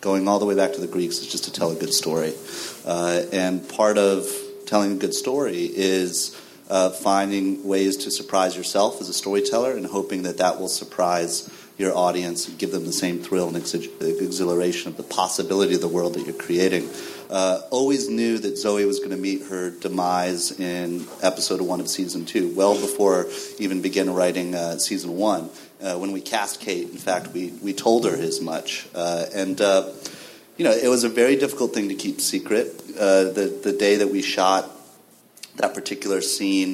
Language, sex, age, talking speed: English, male, 30-49, 195 wpm